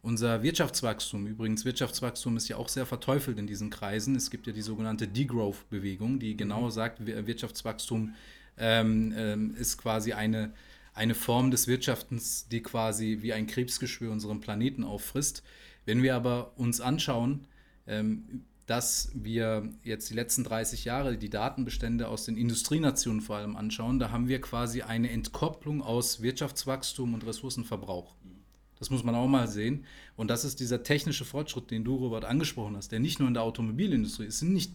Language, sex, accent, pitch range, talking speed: German, male, German, 110-135 Hz, 160 wpm